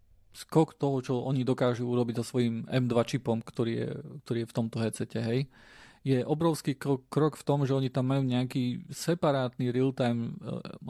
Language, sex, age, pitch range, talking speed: Slovak, male, 40-59, 125-150 Hz, 170 wpm